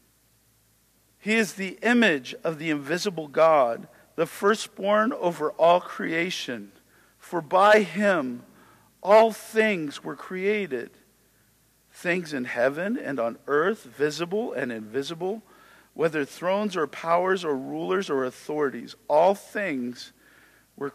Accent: American